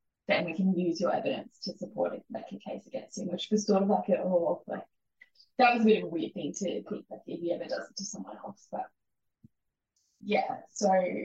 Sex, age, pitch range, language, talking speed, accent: female, 10-29, 180-210 Hz, English, 240 wpm, Australian